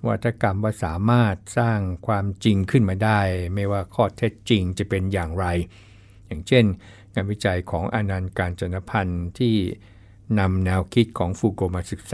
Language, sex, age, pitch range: Thai, male, 60-79, 100-110 Hz